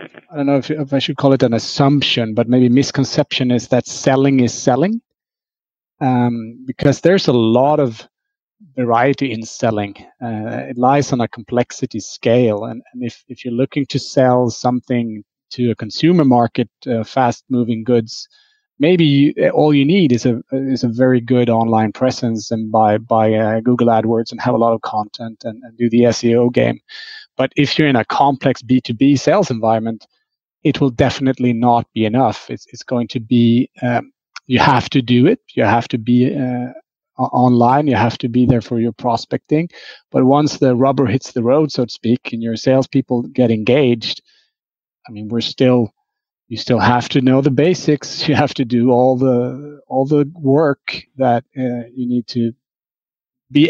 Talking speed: 185 wpm